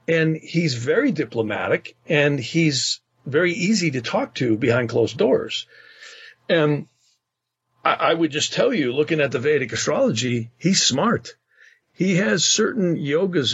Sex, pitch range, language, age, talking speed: male, 120-170 Hz, English, 50-69, 140 wpm